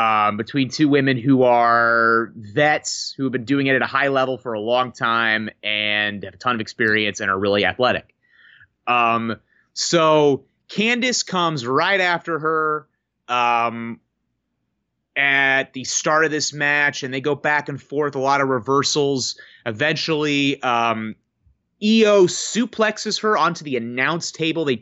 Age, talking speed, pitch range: 30-49, 155 wpm, 115-150 Hz